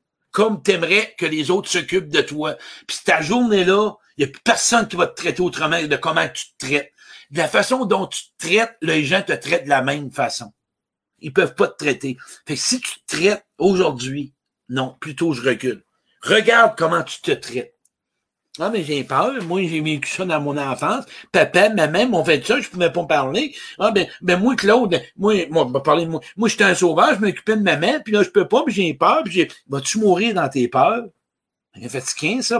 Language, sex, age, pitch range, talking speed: French, male, 60-79, 145-215 Hz, 230 wpm